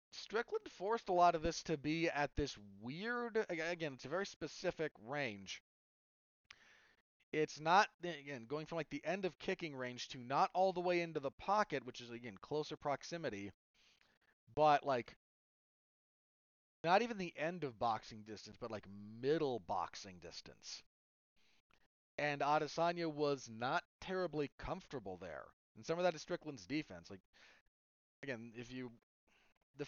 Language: English